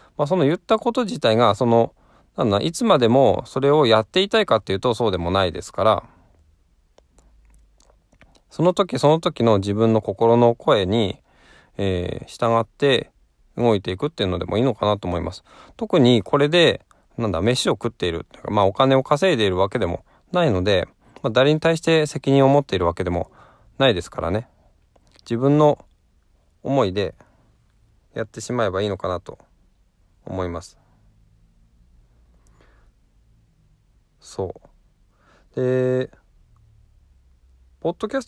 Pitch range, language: 90-140 Hz, Japanese